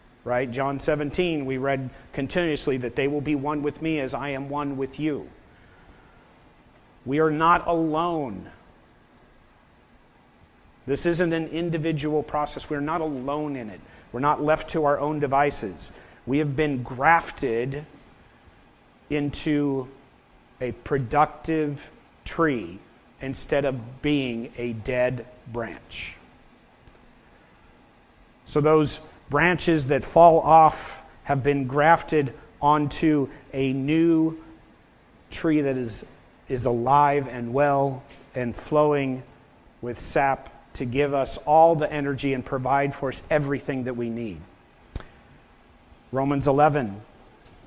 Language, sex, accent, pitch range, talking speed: English, male, American, 125-150 Hz, 115 wpm